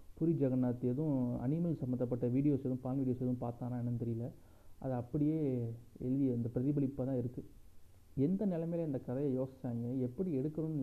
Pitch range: 125-145 Hz